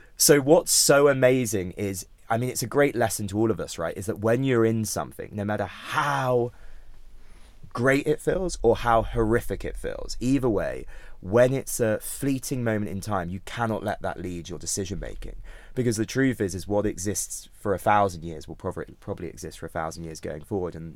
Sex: male